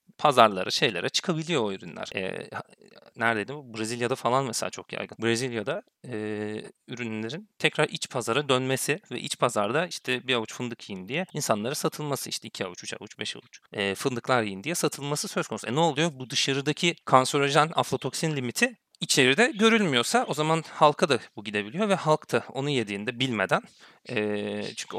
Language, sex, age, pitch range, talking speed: Turkish, male, 40-59, 105-150 Hz, 165 wpm